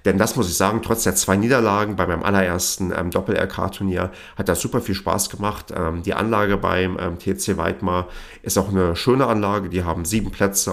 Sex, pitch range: male, 85-100 Hz